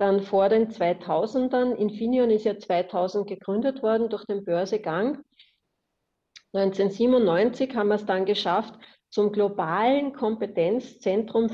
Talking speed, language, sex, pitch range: 115 wpm, German, female, 185-225 Hz